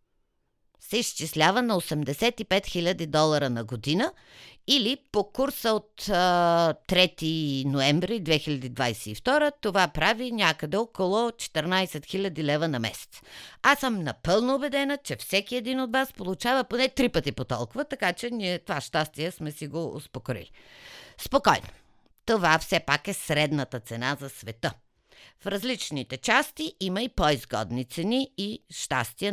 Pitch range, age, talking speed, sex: 145-230 Hz, 50-69, 135 wpm, female